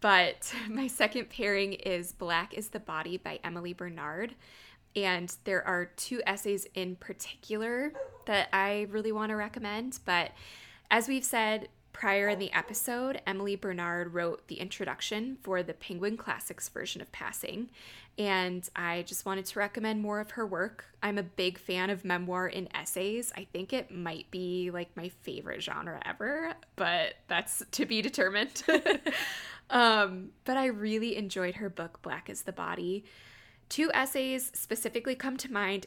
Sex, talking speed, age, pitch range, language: female, 160 wpm, 20-39, 180-225 Hz, English